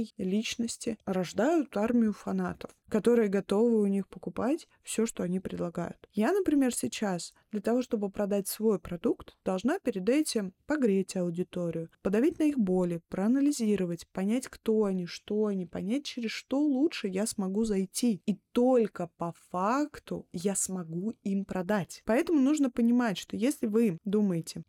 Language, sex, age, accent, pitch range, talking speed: Russian, female, 20-39, native, 180-235 Hz, 145 wpm